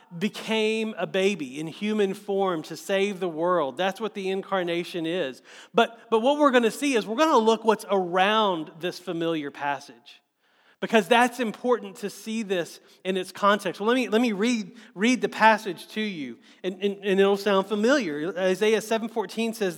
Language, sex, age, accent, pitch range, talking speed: English, male, 40-59, American, 175-220 Hz, 185 wpm